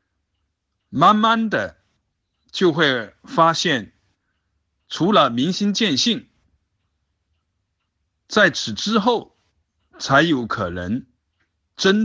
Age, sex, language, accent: 50-69, male, Chinese, native